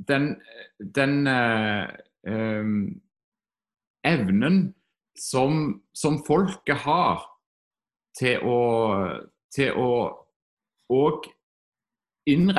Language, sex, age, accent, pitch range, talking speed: English, male, 30-49, Norwegian, 100-145 Hz, 55 wpm